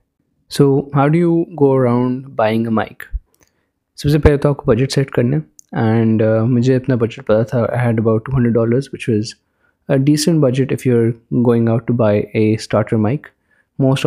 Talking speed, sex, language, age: 160 wpm, male, Urdu, 20-39